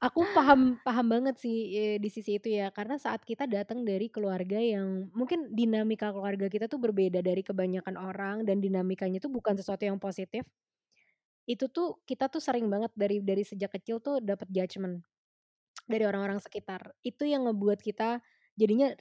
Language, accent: English, Indonesian